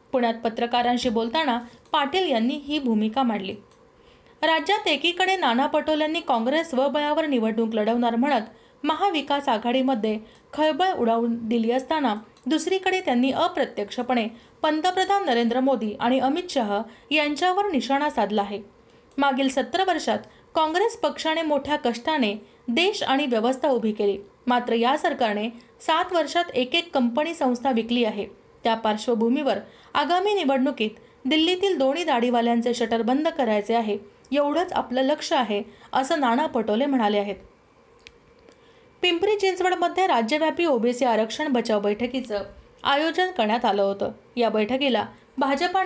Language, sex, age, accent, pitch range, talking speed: Marathi, female, 30-49, native, 230-310 Hz, 120 wpm